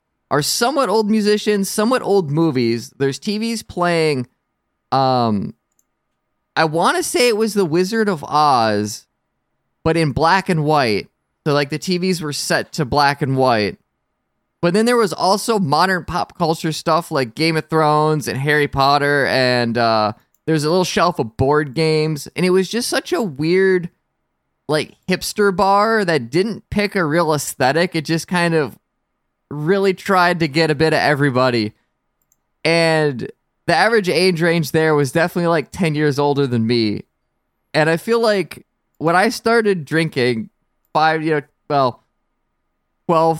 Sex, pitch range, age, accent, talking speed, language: male, 145-190 Hz, 20-39, American, 160 wpm, English